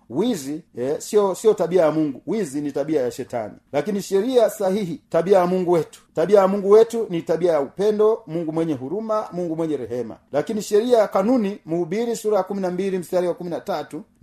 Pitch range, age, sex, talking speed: 155-205 Hz, 40-59, male, 180 wpm